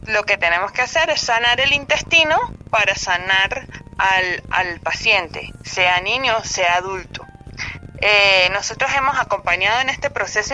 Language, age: Spanish, 30-49